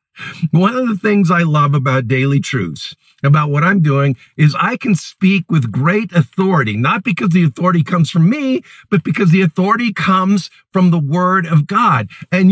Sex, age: male, 50-69